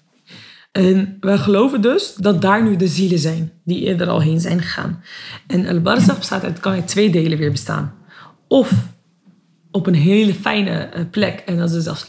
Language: Dutch